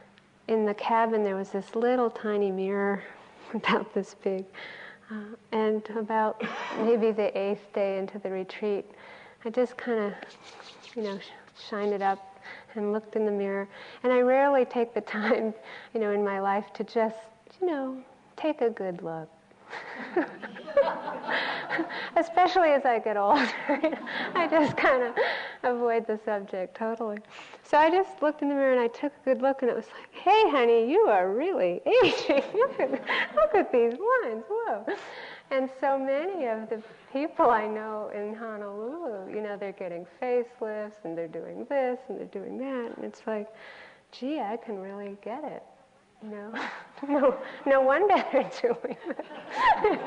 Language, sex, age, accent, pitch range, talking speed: English, female, 40-59, American, 210-275 Hz, 165 wpm